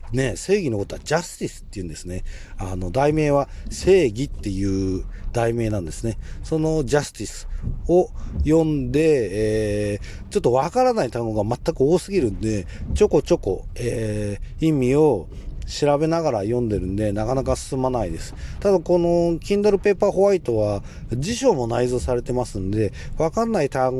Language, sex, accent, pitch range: Japanese, male, native, 100-155 Hz